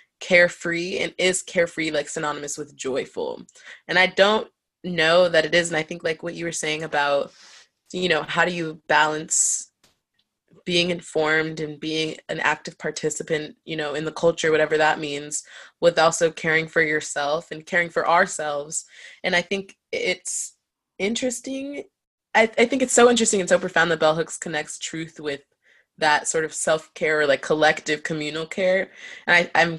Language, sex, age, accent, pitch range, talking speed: English, female, 20-39, American, 155-185 Hz, 175 wpm